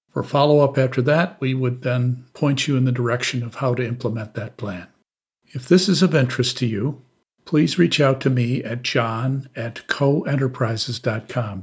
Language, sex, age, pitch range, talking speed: English, male, 50-69, 105-125 Hz, 175 wpm